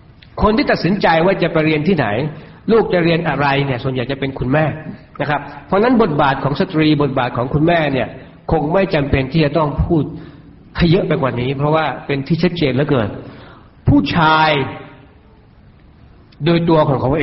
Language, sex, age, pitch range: Thai, male, 60-79, 135-190 Hz